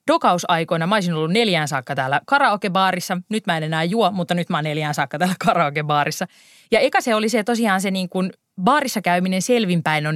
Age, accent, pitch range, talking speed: 20-39, native, 155-195 Hz, 200 wpm